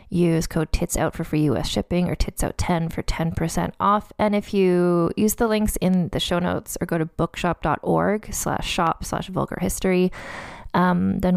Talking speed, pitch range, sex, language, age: 170 wpm, 165-205 Hz, female, English, 20-39